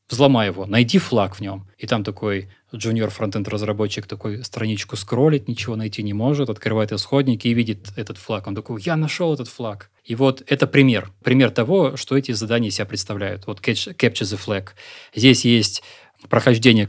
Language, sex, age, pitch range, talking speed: Russian, male, 20-39, 105-130 Hz, 180 wpm